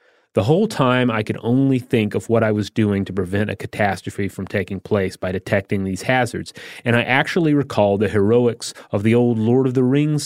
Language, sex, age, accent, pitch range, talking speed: English, male, 30-49, American, 100-125 Hz, 210 wpm